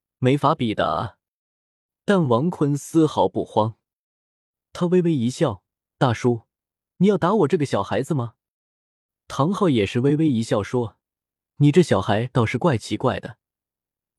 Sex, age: male, 20-39